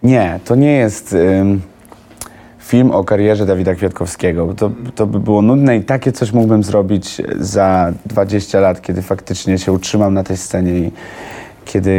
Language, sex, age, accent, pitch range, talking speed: Polish, male, 30-49, native, 95-110 Hz, 160 wpm